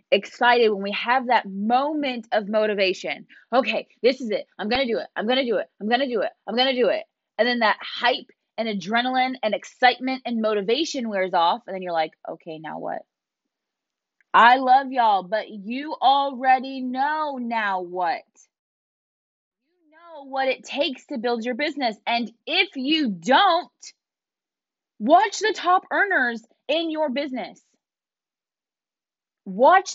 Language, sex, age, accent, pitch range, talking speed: English, female, 20-39, American, 230-300 Hz, 160 wpm